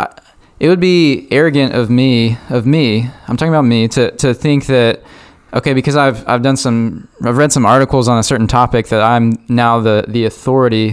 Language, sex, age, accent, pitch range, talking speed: English, male, 20-39, American, 120-145 Hz, 200 wpm